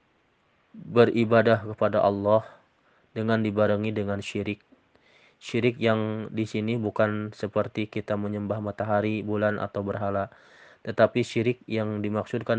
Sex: male